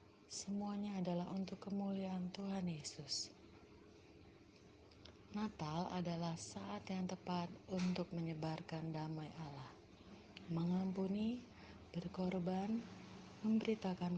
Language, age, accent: Indonesian, 30-49, native